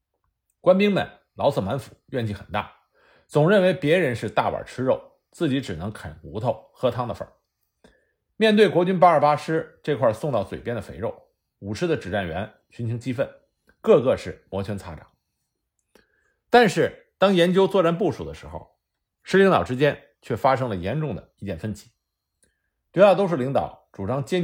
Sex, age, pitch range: male, 50-69, 105-165 Hz